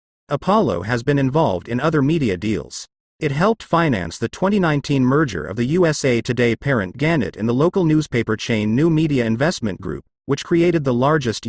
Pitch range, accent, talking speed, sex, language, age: 110-155 Hz, American, 170 wpm, male, English, 40-59